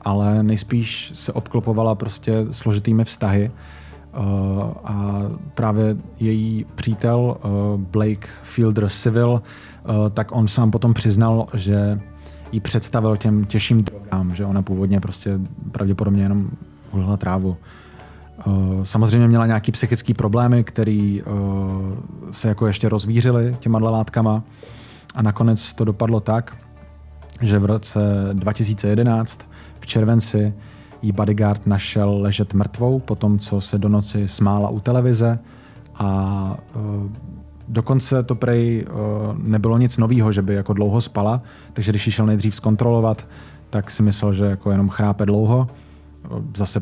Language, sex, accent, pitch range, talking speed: Czech, male, native, 100-115 Hz, 125 wpm